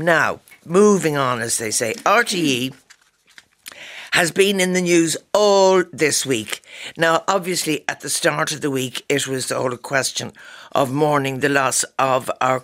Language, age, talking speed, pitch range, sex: English, 60-79, 160 wpm, 130-170 Hz, female